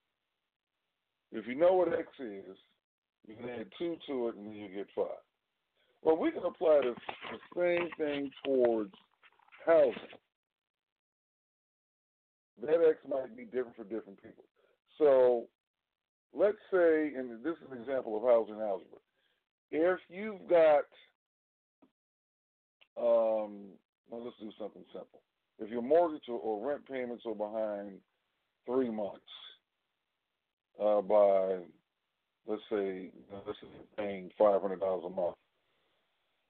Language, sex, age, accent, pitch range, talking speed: English, male, 50-69, American, 105-160 Hz, 125 wpm